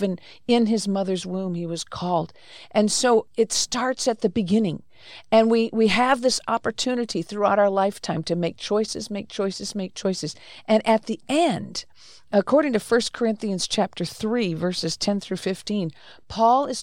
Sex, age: female, 50-69